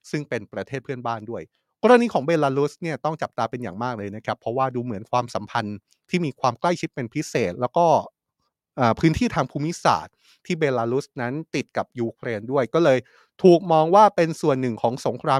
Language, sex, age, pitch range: Thai, male, 30-49, 125-165 Hz